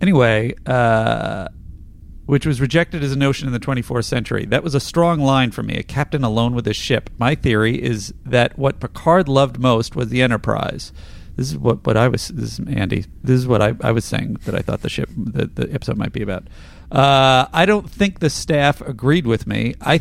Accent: American